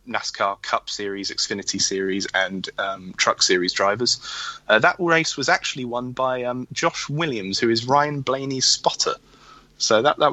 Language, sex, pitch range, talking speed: English, male, 100-135 Hz, 165 wpm